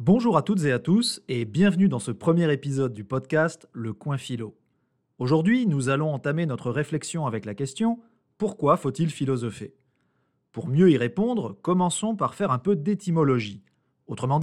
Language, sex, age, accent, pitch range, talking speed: French, male, 30-49, French, 130-185 Hz, 165 wpm